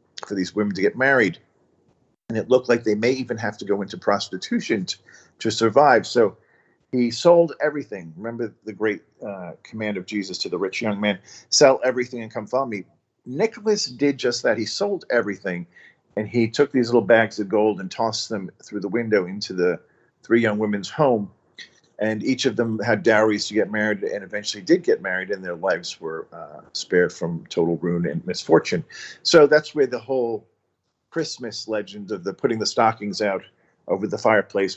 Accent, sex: American, male